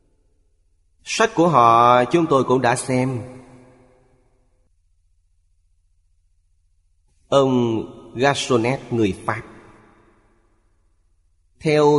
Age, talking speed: 30-49, 65 wpm